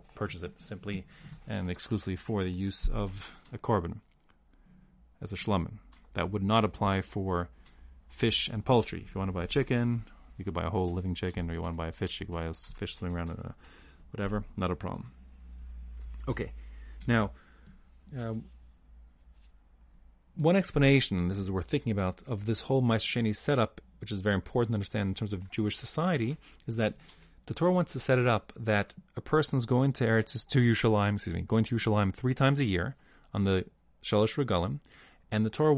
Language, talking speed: English, 195 wpm